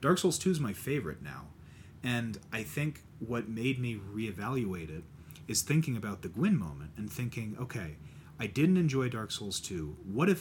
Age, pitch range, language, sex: 30-49, 90-120 Hz, English, male